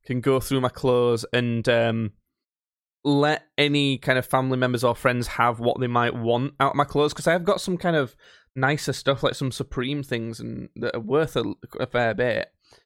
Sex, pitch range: male, 115-140 Hz